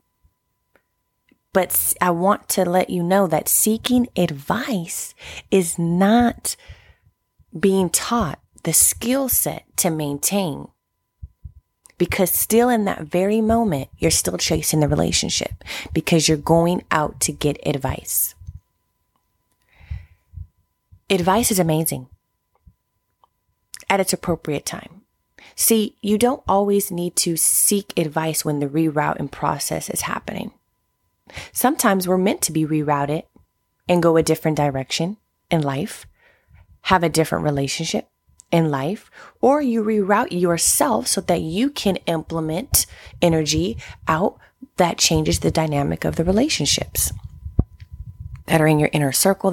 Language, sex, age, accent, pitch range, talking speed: English, female, 30-49, American, 140-195 Hz, 125 wpm